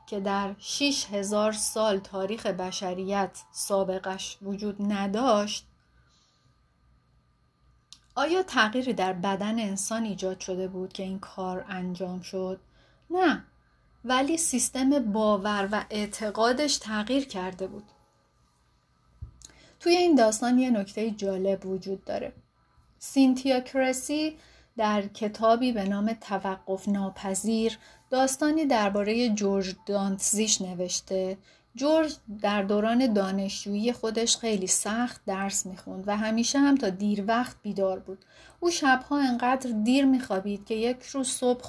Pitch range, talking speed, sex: 195-245 Hz, 110 wpm, female